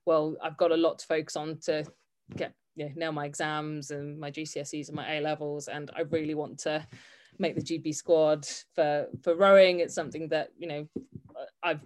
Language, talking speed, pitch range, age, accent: English, 195 wpm, 155-170 Hz, 20-39, British